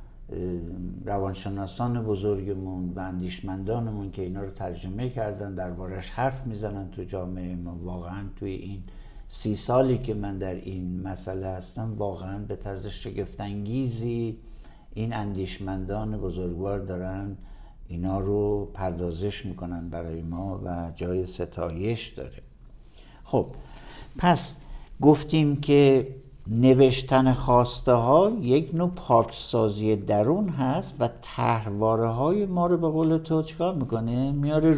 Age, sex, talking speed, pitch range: 60-79, male, 115 wpm, 95-130 Hz